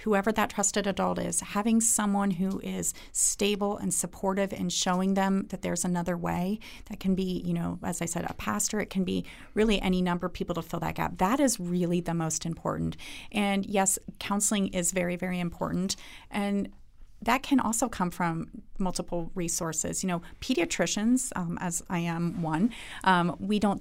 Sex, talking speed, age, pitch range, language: female, 185 wpm, 30-49, 170-200 Hz, English